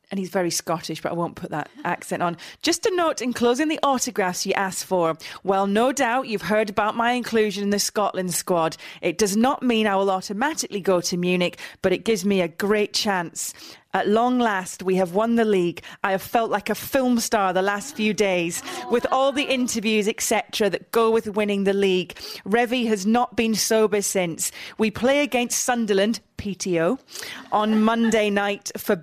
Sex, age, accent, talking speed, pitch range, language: female, 30-49, British, 195 wpm, 190-235 Hz, English